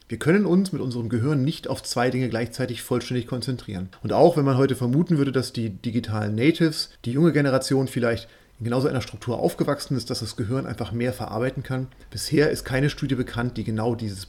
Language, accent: German, German